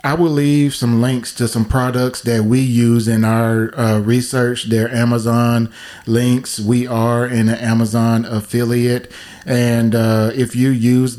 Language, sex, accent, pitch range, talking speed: English, male, American, 110-125 Hz, 155 wpm